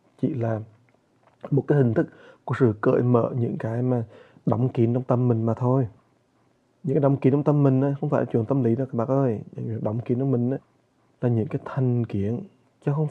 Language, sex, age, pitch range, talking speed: English, male, 20-39, 115-130 Hz, 195 wpm